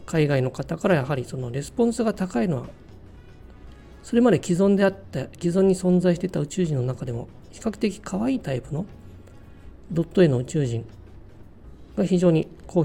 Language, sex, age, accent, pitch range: Japanese, male, 40-59, native, 115-175 Hz